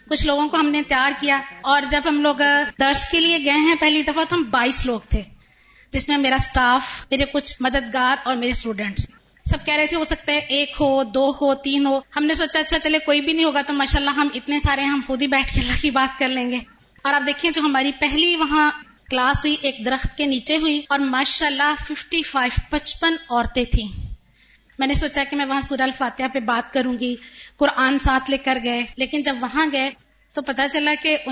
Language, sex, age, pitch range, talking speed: Urdu, female, 20-39, 260-300 Hz, 220 wpm